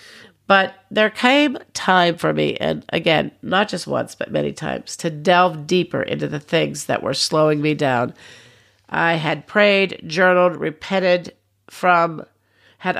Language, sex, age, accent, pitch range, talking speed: English, female, 50-69, American, 135-180 Hz, 150 wpm